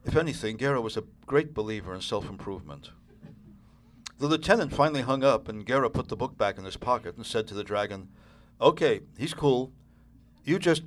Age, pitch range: 60-79, 105-140 Hz